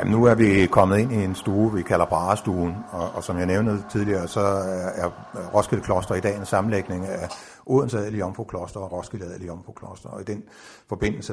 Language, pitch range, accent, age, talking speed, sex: Danish, 90-105 Hz, native, 60-79, 200 wpm, male